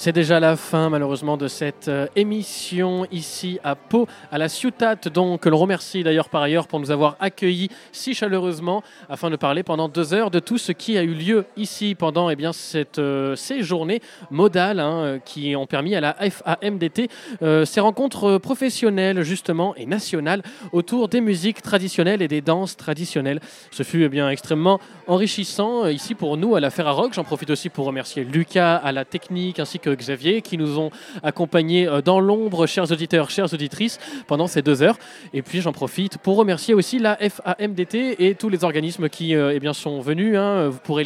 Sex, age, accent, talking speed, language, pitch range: male, 20-39, French, 190 wpm, French, 160-205 Hz